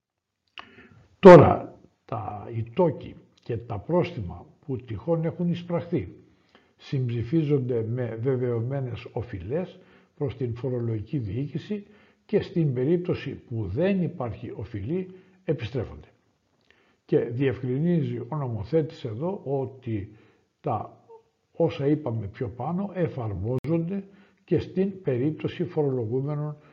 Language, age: Greek, 60-79